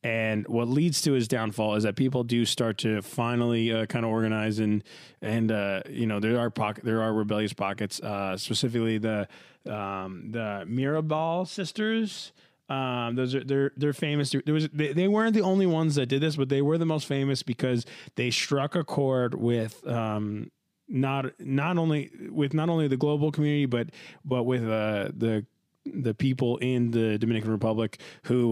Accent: American